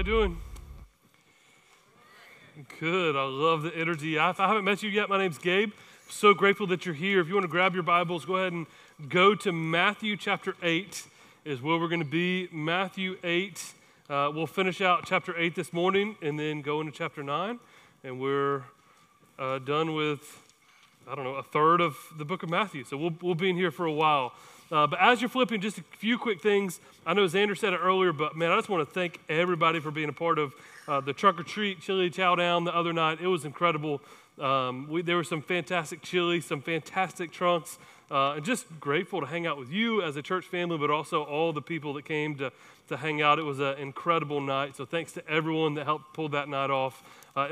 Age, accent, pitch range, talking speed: 30-49, American, 150-185 Hz, 220 wpm